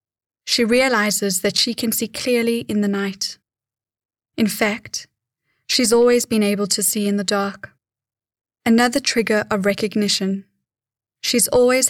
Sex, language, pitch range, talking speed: female, English, 140-225 Hz, 135 wpm